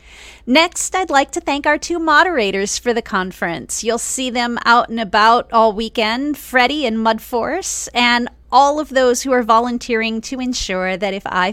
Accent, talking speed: American, 175 wpm